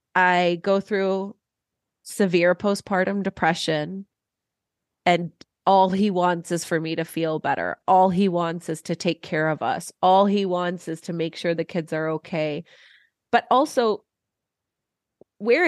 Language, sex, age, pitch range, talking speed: English, female, 30-49, 170-210 Hz, 150 wpm